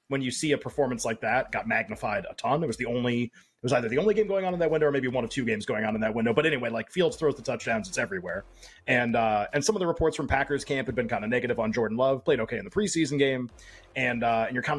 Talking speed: 305 wpm